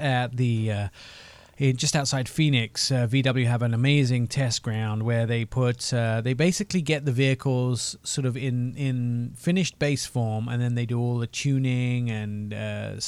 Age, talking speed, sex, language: 30-49, 180 wpm, male, English